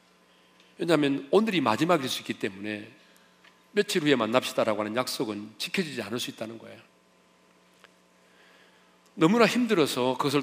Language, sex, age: Korean, male, 40-59